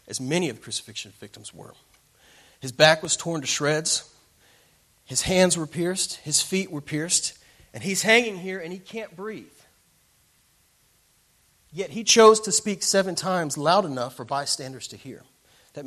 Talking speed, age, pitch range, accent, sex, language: 165 wpm, 30-49, 110-155 Hz, American, male, English